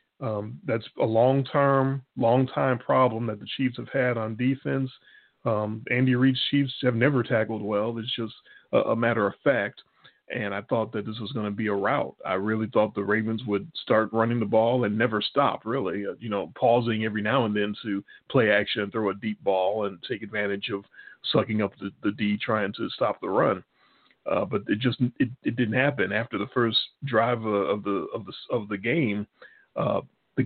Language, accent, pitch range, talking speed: English, American, 105-125 Hz, 200 wpm